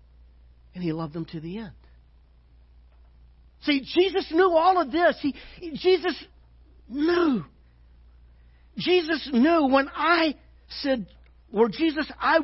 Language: English